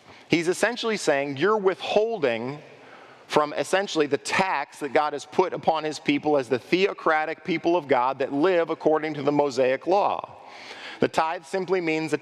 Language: English